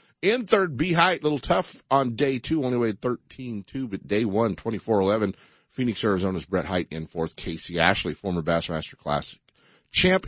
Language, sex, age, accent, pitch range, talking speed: English, male, 50-69, American, 90-135 Hz, 170 wpm